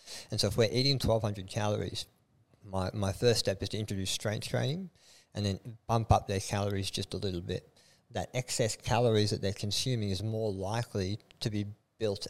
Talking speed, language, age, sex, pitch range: 185 wpm, English, 50-69, male, 100-115 Hz